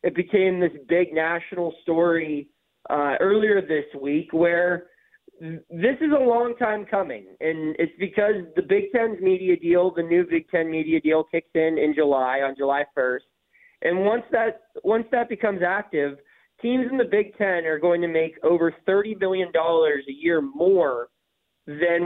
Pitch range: 165-230 Hz